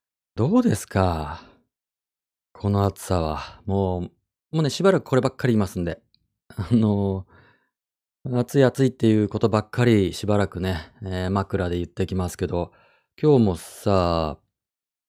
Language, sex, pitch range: Japanese, male, 90-125 Hz